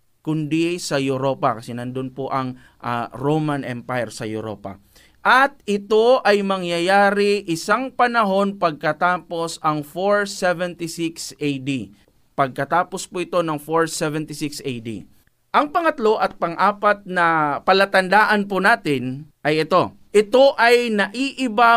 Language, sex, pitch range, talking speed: Filipino, male, 150-205 Hz, 115 wpm